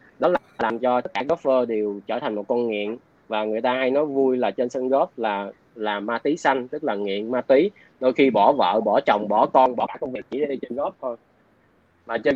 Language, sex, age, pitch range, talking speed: Vietnamese, male, 20-39, 115-150 Hz, 250 wpm